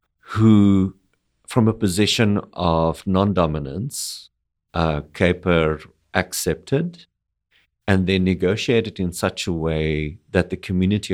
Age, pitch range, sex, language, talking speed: 50-69, 80-95 Hz, male, English, 100 wpm